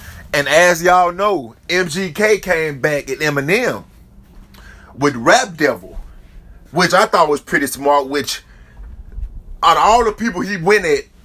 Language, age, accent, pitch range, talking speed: English, 30-49, American, 130-180 Hz, 145 wpm